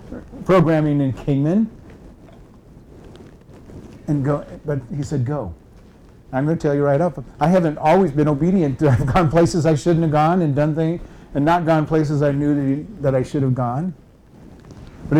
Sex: male